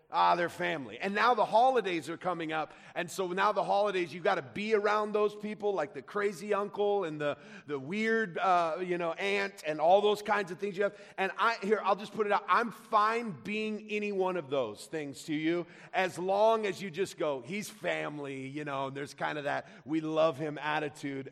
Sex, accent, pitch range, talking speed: male, American, 165-205 Hz, 220 wpm